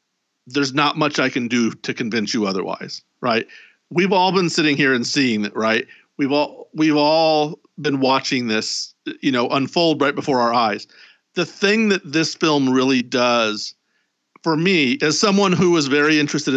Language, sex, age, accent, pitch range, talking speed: English, male, 50-69, American, 130-160 Hz, 180 wpm